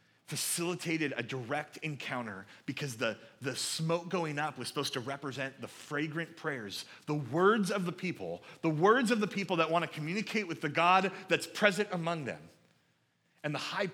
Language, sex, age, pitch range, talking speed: English, male, 30-49, 120-165 Hz, 175 wpm